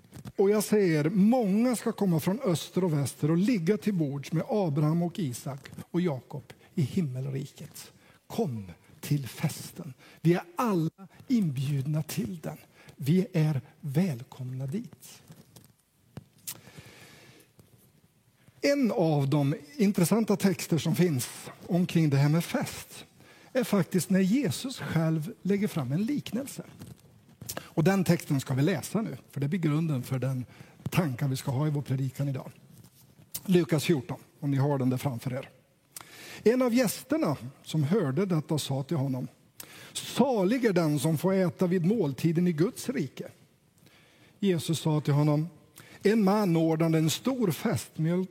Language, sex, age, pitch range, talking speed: Swedish, male, 60-79, 145-190 Hz, 145 wpm